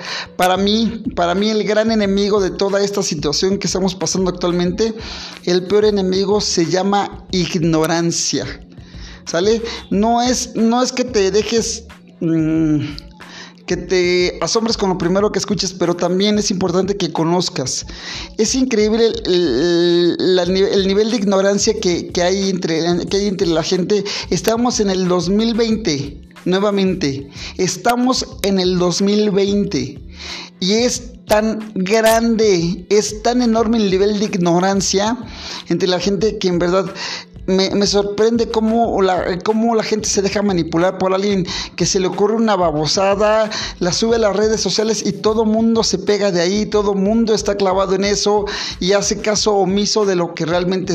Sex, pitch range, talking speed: male, 180-215 Hz, 155 wpm